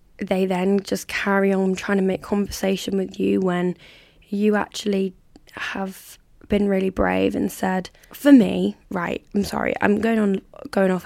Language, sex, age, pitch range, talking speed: English, female, 10-29, 185-210 Hz, 165 wpm